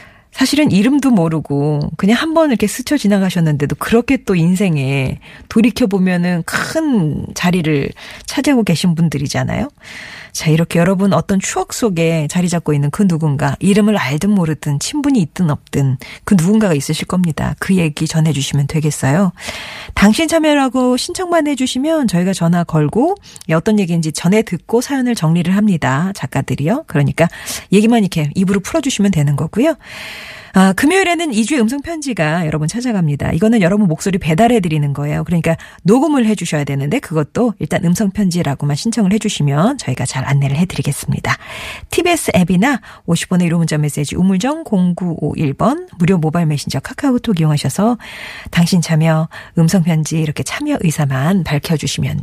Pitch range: 155-220 Hz